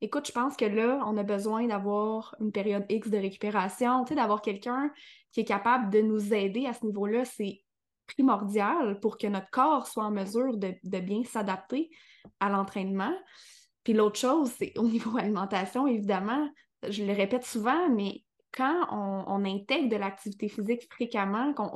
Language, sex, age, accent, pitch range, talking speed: French, female, 20-39, Canadian, 205-255 Hz, 175 wpm